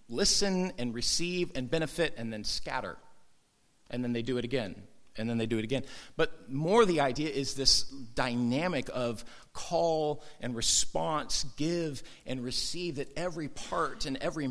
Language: English